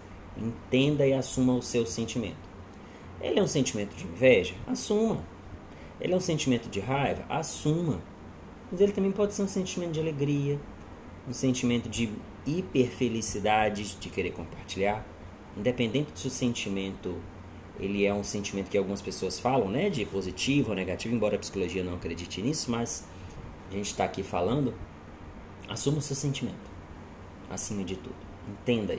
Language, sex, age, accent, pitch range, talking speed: Portuguese, male, 30-49, Brazilian, 95-140 Hz, 150 wpm